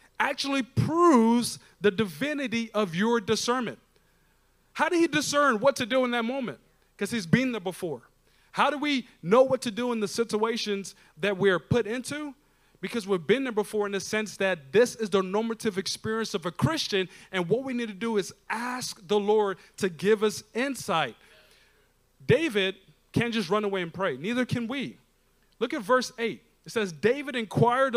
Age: 30-49